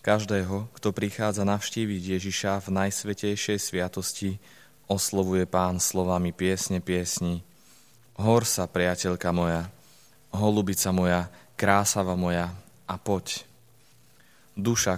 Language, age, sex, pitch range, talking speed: Slovak, 20-39, male, 90-105 Hz, 95 wpm